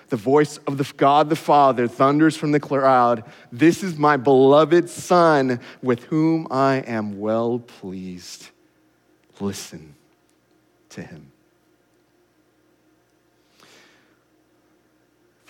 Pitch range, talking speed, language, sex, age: 110-140 Hz, 100 wpm, English, male, 30-49